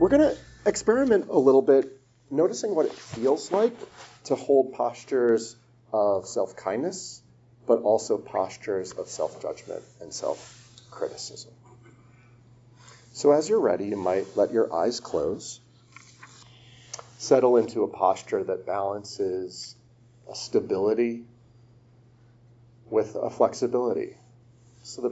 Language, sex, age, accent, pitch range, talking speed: English, male, 40-59, American, 115-120 Hz, 110 wpm